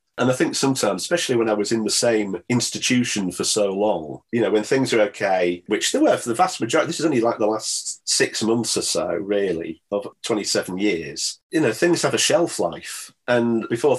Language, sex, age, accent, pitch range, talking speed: English, male, 40-59, British, 105-125 Hz, 220 wpm